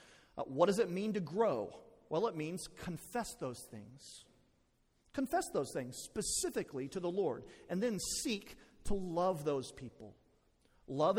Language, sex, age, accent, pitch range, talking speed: English, male, 40-59, American, 135-195 Hz, 150 wpm